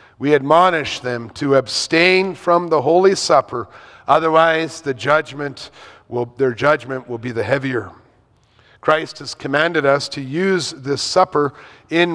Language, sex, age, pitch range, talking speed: English, male, 40-59, 140-190 Hz, 125 wpm